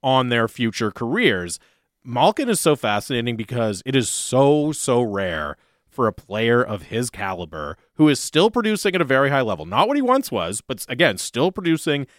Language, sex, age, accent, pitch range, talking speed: English, male, 30-49, American, 120-180 Hz, 185 wpm